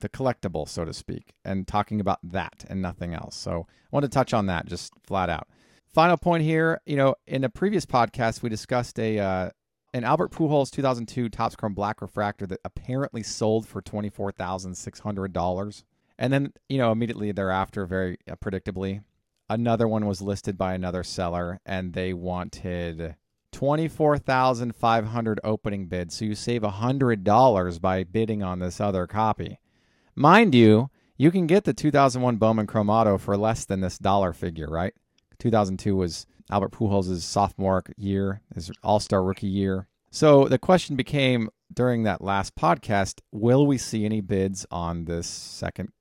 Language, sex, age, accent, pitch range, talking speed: English, male, 40-59, American, 95-125 Hz, 170 wpm